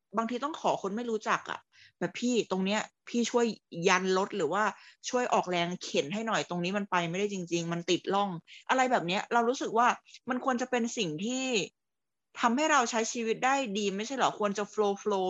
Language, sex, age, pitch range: Thai, female, 20-39, 185-220 Hz